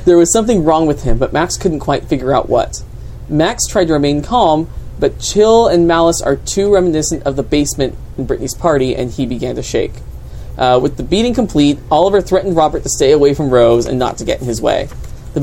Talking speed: 220 wpm